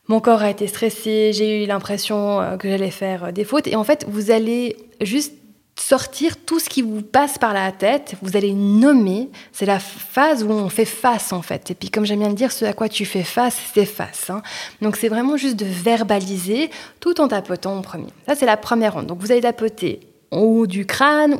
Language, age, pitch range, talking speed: French, 20-39, 205-265 Hz, 225 wpm